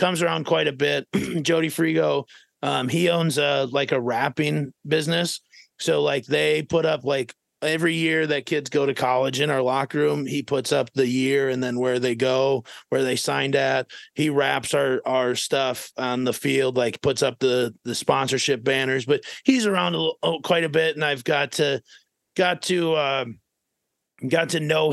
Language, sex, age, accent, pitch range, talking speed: English, male, 30-49, American, 130-160 Hz, 190 wpm